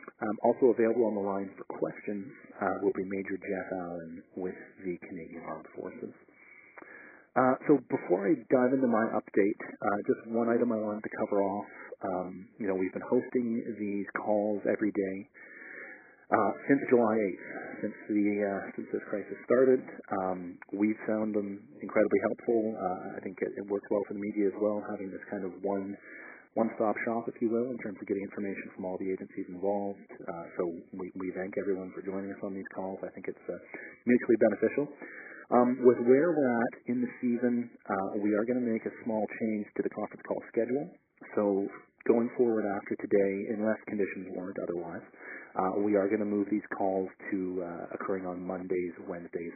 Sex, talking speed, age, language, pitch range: male, 190 wpm, 40-59, English, 95-115 Hz